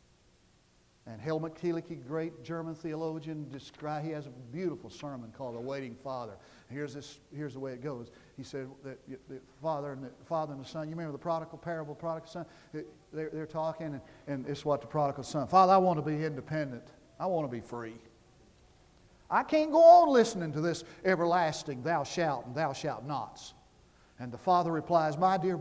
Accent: American